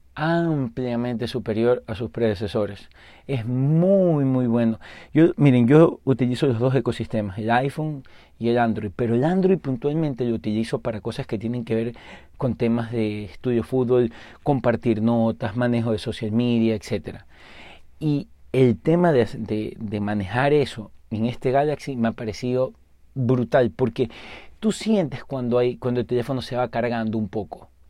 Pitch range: 110-130 Hz